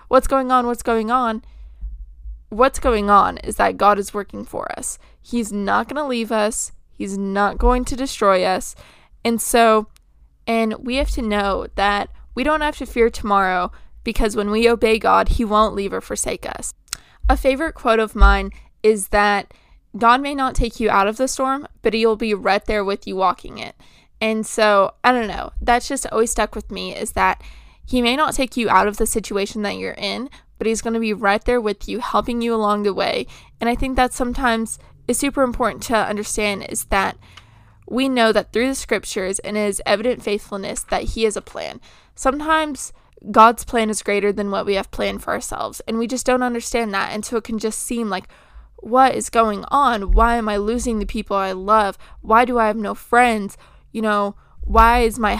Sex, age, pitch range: female, 20-39, 205-245 Hz